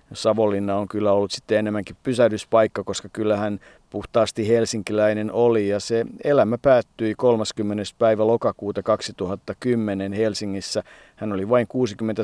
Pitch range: 100-115 Hz